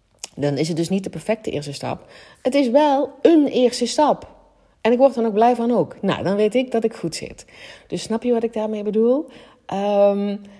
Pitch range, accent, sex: 150-205 Hz, Dutch, female